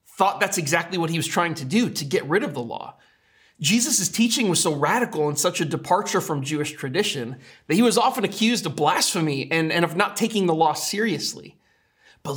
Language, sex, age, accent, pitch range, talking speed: English, male, 30-49, American, 160-230 Hz, 210 wpm